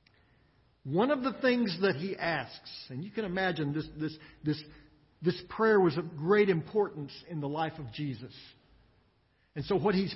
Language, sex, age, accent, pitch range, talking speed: English, male, 50-69, American, 130-210 Hz, 170 wpm